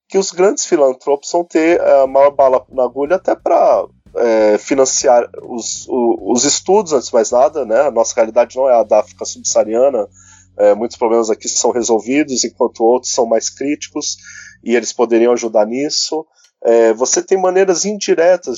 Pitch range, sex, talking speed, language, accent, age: 115-165 Hz, male, 160 wpm, Portuguese, Brazilian, 20-39